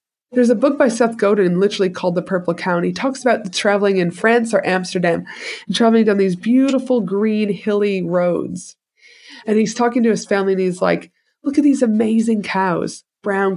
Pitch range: 190-235 Hz